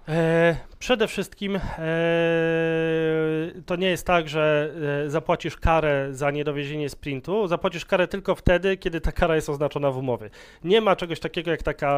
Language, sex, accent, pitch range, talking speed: Polish, male, native, 145-175 Hz, 145 wpm